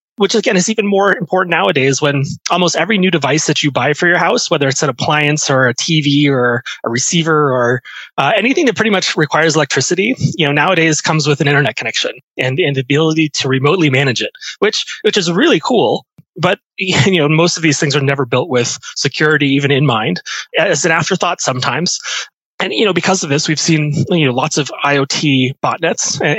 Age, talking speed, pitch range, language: 30-49, 205 wpm, 140-165 Hz, English